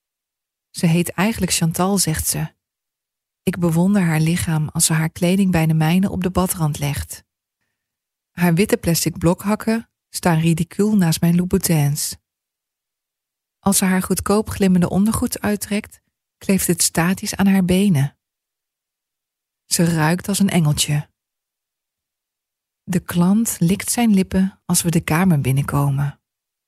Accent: Dutch